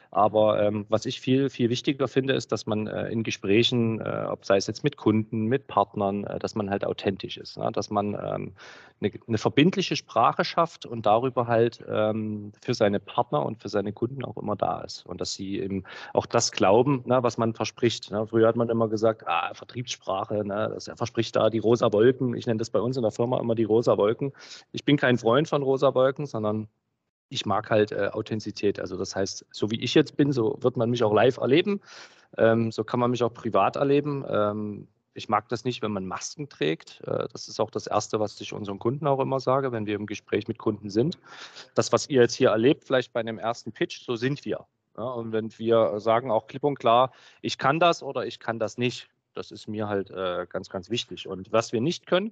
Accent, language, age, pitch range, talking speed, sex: German, English, 40-59, 105-130 Hz, 220 wpm, male